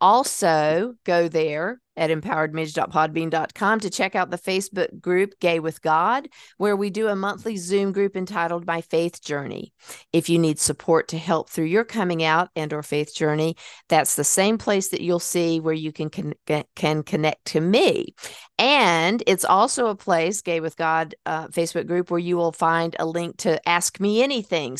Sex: female